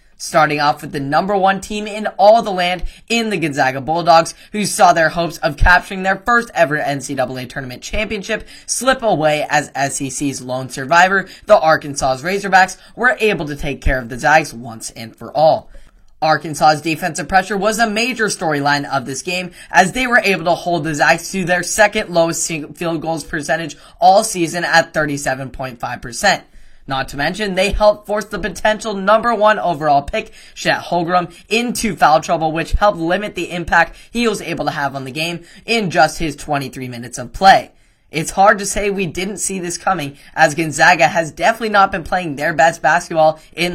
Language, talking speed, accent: English, 185 wpm, American